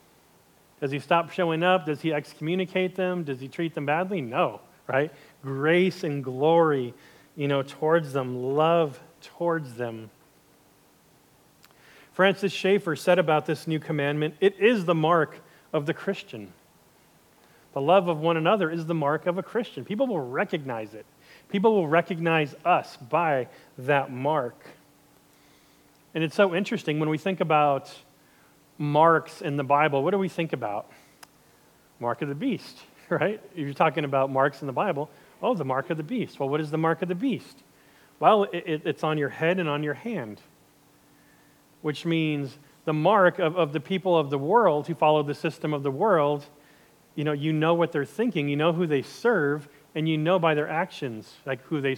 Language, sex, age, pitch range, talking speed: English, male, 40-59, 145-175 Hz, 175 wpm